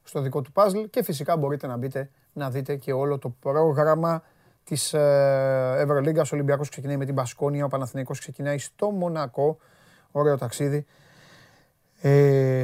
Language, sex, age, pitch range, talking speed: Greek, male, 30-49, 135-170 Hz, 145 wpm